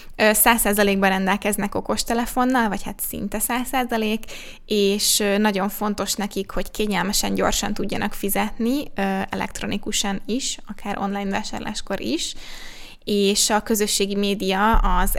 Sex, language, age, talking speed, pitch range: female, Hungarian, 20-39, 105 wpm, 195-220 Hz